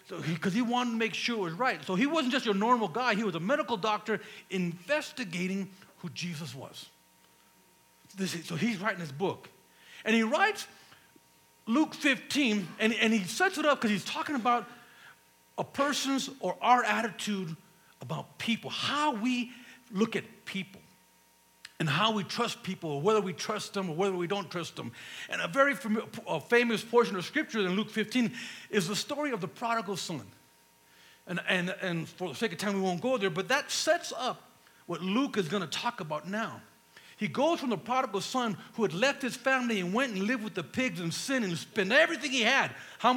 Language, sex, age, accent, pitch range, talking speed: English, male, 50-69, American, 190-245 Hz, 195 wpm